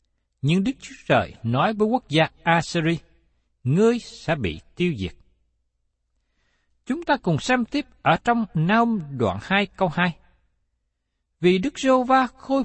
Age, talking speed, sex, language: 60-79, 140 wpm, male, Vietnamese